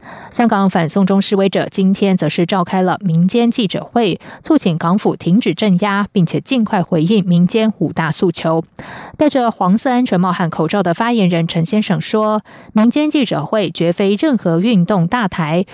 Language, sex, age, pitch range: German, female, 20-39, 175-230 Hz